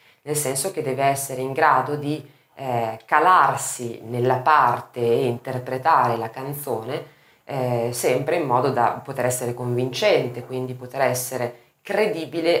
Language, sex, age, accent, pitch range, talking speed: Italian, female, 20-39, native, 120-155 Hz, 135 wpm